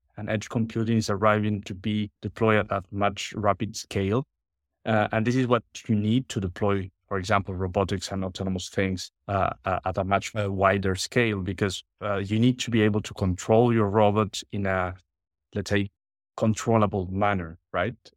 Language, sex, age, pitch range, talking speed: English, male, 30-49, 95-110 Hz, 170 wpm